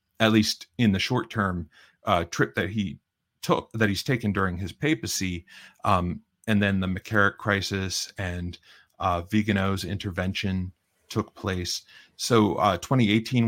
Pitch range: 95-110 Hz